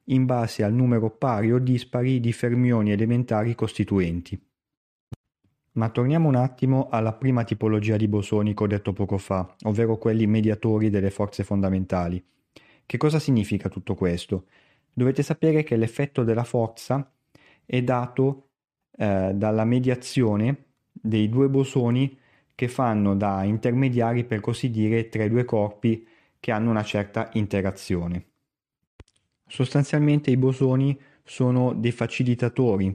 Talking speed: 135 wpm